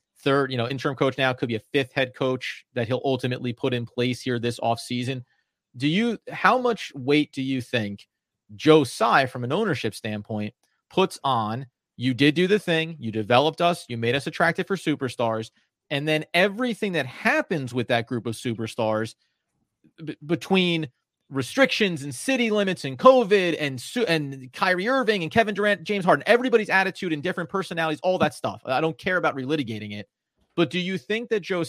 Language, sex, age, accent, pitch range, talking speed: English, male, 30-49, American, 125-175 Hz, 185 wpm